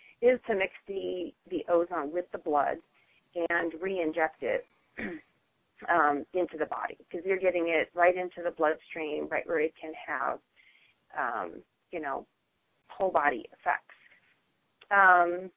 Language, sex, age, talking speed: English, female, 30-49, 140 wpm